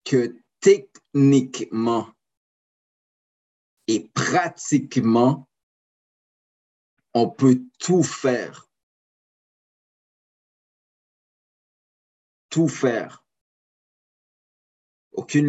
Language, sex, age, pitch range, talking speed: French, male, 50-69, 95-135 Hz, 45 wpm